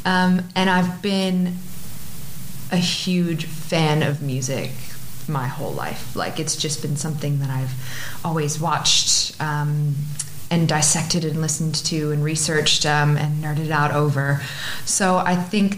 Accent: American